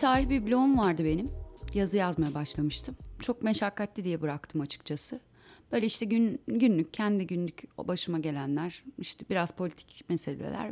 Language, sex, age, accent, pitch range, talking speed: Turkish, female, 30-49, native, 175-245 Hz, 145 wpm